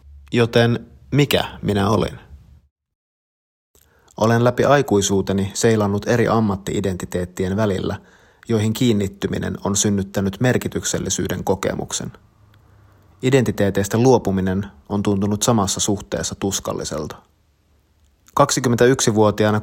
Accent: native